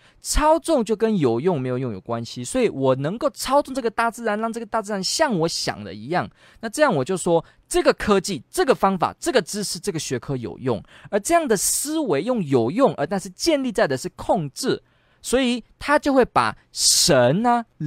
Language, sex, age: Chinese, male, 20-39